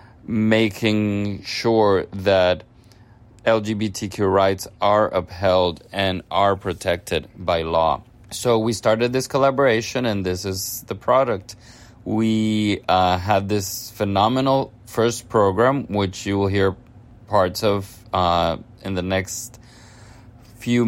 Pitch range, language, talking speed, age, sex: 95-115 Hz, English, 115 wpm, 30-49, male